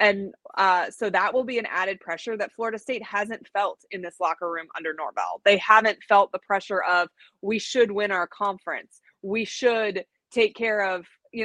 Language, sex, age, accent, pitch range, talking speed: English, female, 20-39, American, 195-235 Hz, 195 wpm